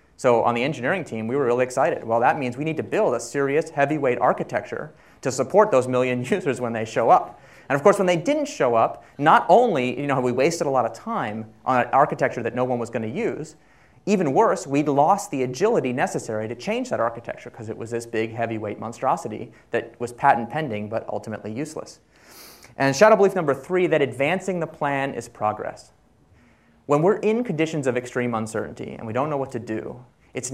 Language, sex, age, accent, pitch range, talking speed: English, male, 30-49, American, 115-155 Hz, 210 wpm